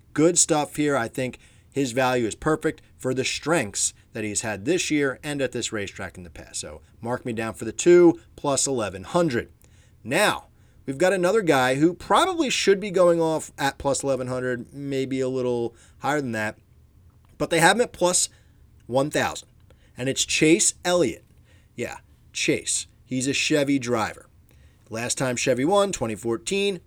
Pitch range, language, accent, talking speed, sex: 115-170 Hz, English, American, 165 wpm, male